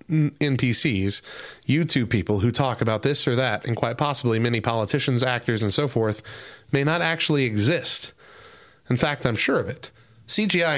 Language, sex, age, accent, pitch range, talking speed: English, male, 30-49, American, 115-145 Hz, 160 wpm